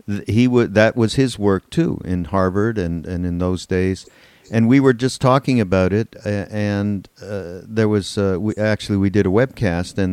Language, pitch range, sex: English, 95-115 Hz, male